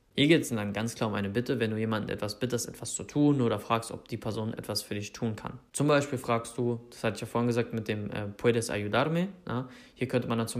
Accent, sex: German, male